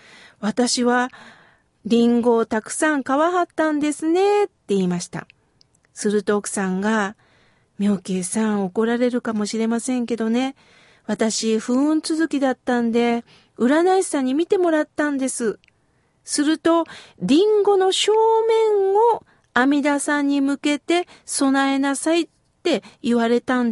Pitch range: 225-325 Hz